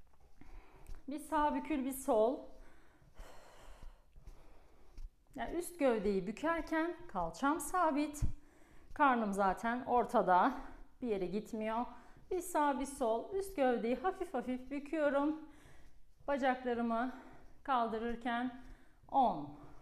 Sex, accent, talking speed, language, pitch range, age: female, native, 85 wpm, Turkish, 225-300 Hz, 40-59